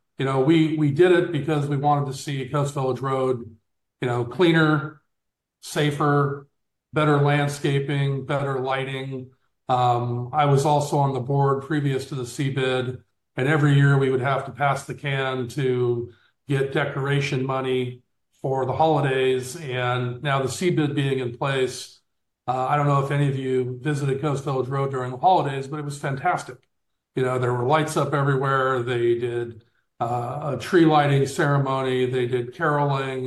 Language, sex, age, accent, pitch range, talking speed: English, male, 40-59, American, 125-145 Hz, 170 wpm